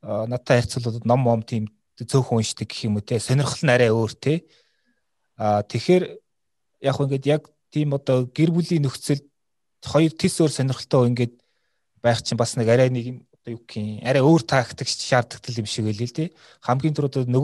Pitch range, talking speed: 115-140 Hz, 80 wpm